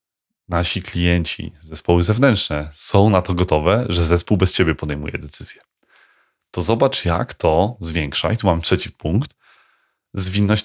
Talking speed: 140 wpm